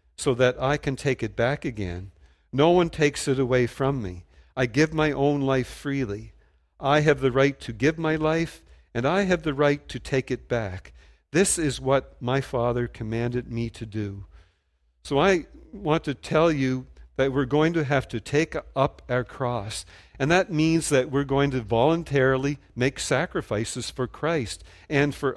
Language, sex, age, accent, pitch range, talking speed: English, male, 50-69, American, 110-145 Hz, 180 wpm